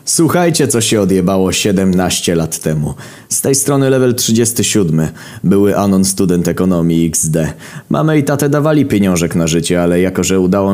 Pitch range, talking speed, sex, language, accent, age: 90-125 Hz, 155 wpm, male, Polish, native, 20-39